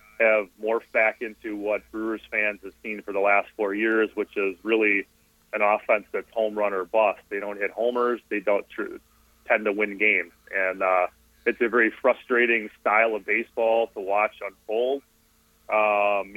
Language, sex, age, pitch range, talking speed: English, male, 30-49, 100-110 Hz, 170 wpm